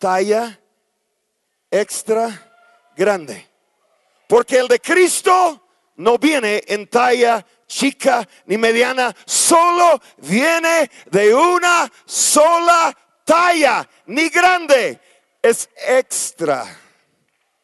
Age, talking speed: 50-69, 80 wpm